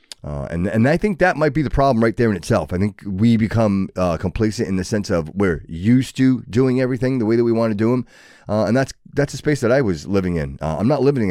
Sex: male